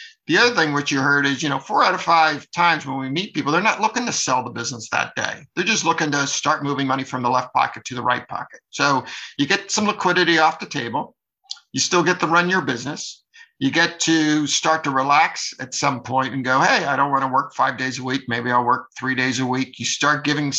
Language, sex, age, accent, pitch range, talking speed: English, male, 50-69, American, 135-165 Hz, 255 wpm